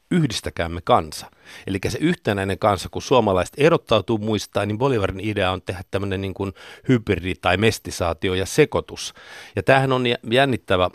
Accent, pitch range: native, 90-110 Hz